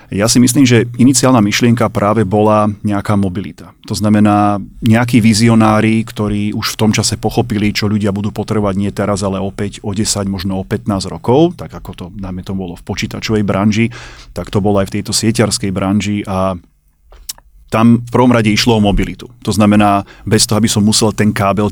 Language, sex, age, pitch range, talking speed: Slovak, male, 30-49, 100-115 Hz, 190 wpm